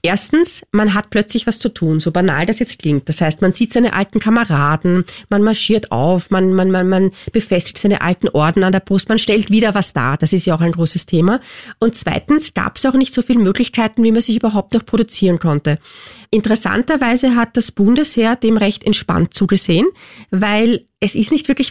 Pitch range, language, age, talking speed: 185-230 Hz, German, 30-49, 200 wpm